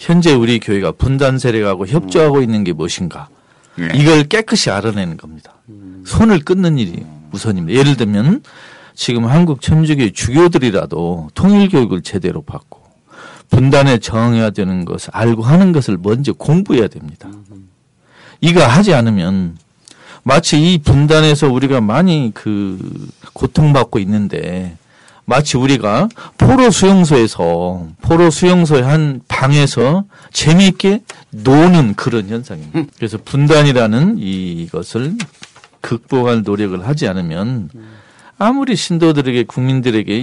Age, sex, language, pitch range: 40-59, male, Korean, 110-160 Hz